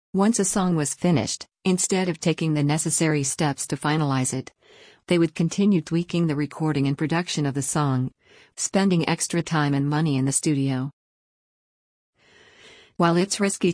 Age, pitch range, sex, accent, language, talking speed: 50-69, 145-170 Hz, female, American, English, 155 wpm